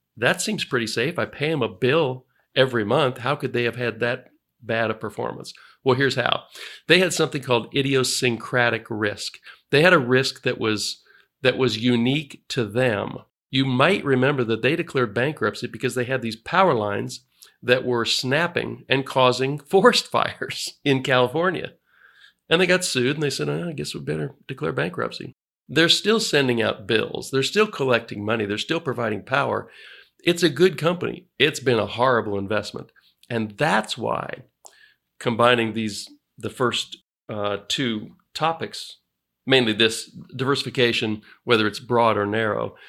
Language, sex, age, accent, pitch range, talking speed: English, male, 50-69, American, 115-145 Hz, 160 wpm